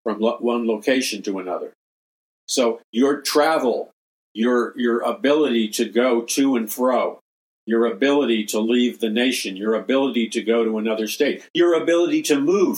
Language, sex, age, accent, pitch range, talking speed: English, male, 50-69, American, 115-145 Hz, 160 wpm